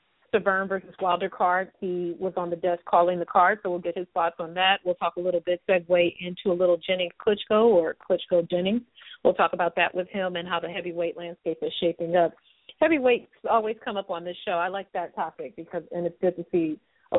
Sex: female